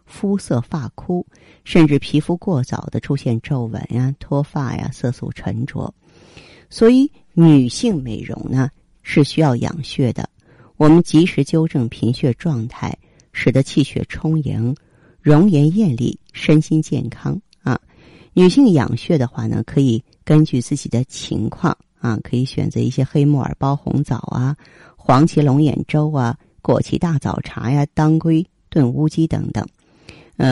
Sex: female